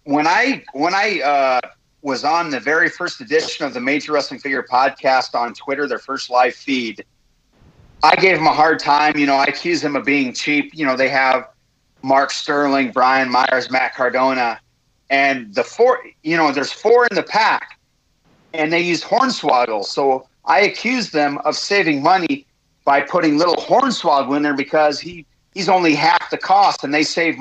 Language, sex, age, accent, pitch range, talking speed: English, male, 40-59, American, 130-170 Hz, 185 wpm